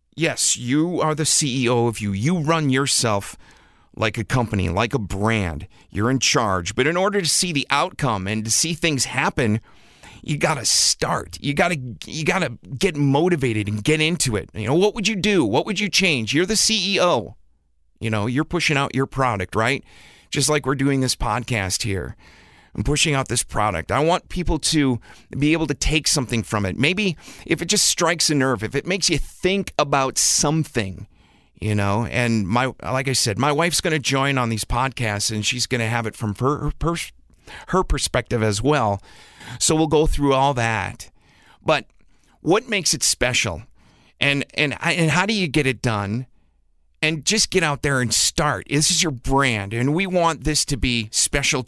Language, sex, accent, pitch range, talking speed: English, male, American, 110-155 Hz, 200 wpm